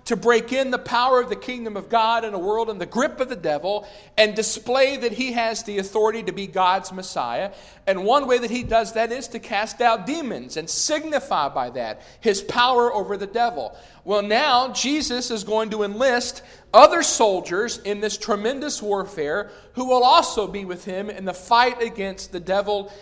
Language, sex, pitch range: English, male, 200-245 Hz